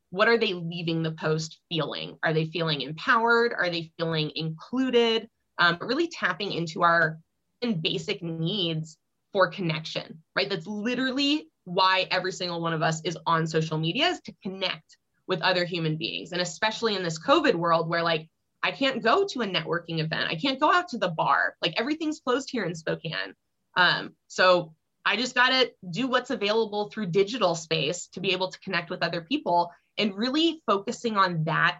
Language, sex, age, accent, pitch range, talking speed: English, female, 20-39, American, 165-225 Hz, 185 wpm